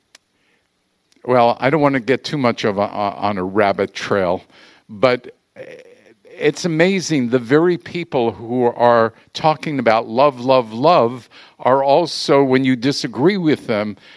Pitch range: 120-155 Hz